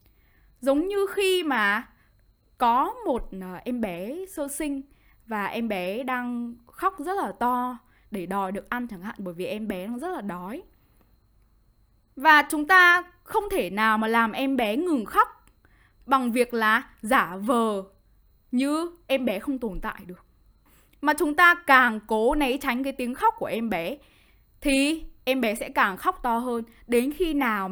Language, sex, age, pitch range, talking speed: Vietnamese, female, 10-29, 200-280 Hz, 175 wpm